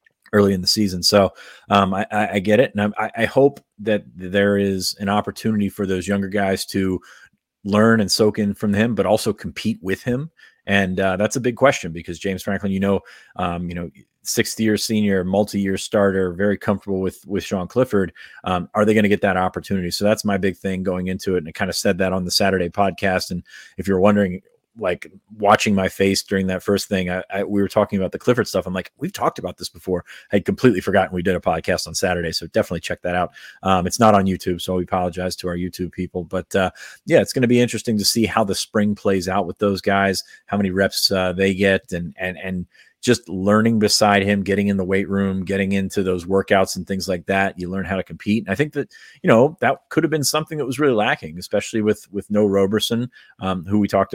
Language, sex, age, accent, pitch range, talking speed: English, male, 30-49, American, 95-105 Hz, 235 wpm